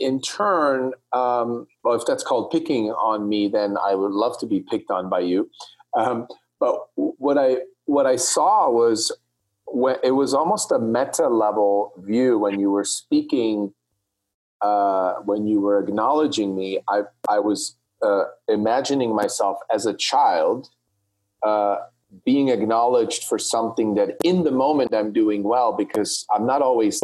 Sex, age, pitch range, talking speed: male, 40-59, 100-150 Hz, 160 wpm